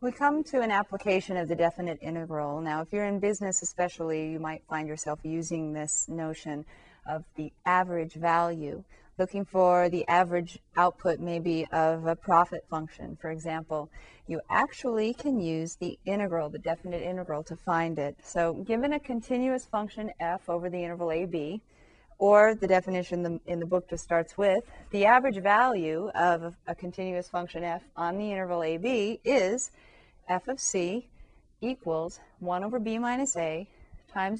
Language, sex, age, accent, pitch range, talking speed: English, female, 30-49, American, 165-205 Hz, 165 wpm